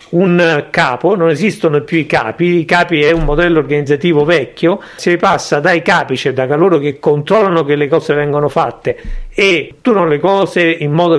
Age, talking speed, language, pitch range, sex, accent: 50-69, 180 wpm, Italian, 150-195 Hz, male, native